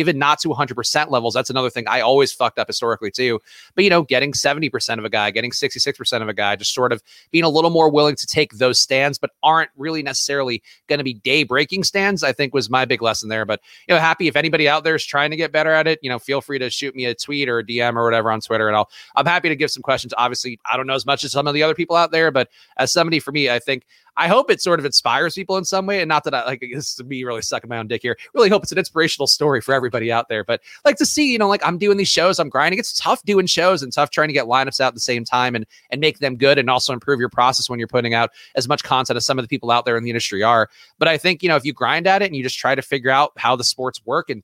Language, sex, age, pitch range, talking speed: English, male, 30-49, 125-160 Hz, 310 wpm